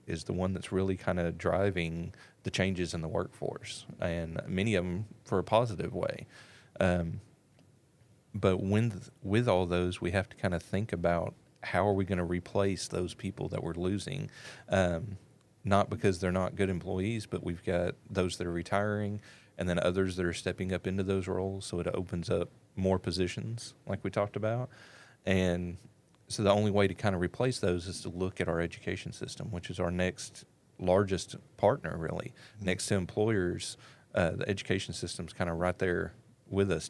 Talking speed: 190 wpm